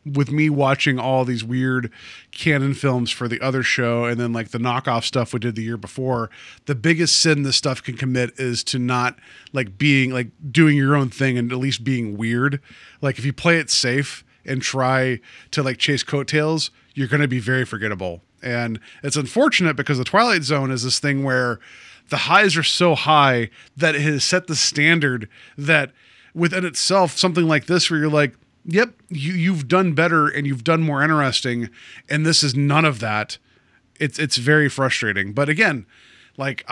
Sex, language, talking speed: male, English, 190 wpm